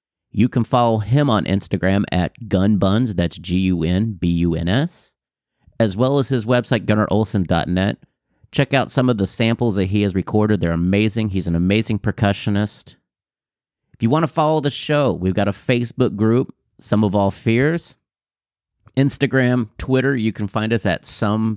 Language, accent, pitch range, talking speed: English, American, 90-125 Hz, 155 wpm